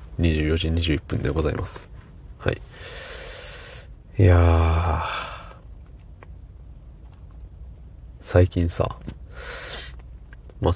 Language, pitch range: Japanese, 80-100 Hz